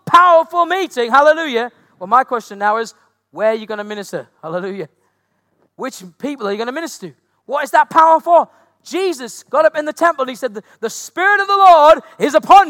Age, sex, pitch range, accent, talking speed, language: 40-59, male, 235-345 Hz, British, 210 wpm, English